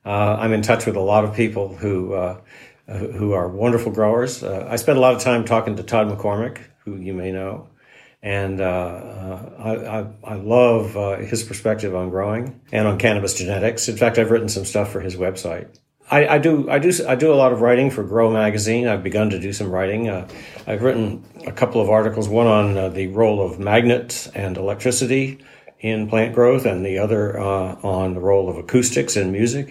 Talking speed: 210 wpm